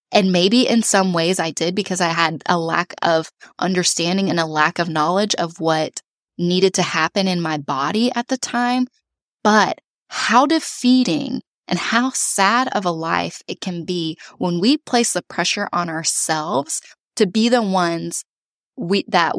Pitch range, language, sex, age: 175-230 Hz, English, female, 10-29